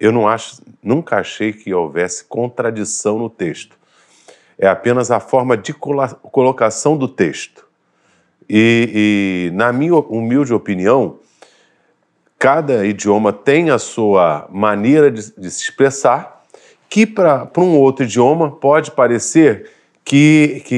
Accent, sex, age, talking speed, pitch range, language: Brazilian, male, 40-59, 115 wpm, 115-155 Hz, Portuguese